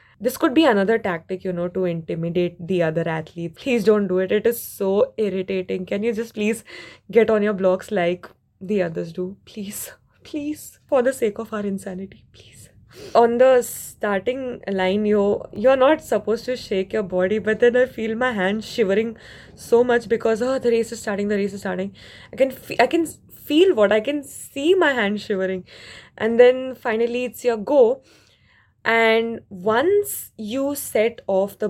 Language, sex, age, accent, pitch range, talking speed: English, female, 20-39, Indian, 190-235 Hz, 185 wpm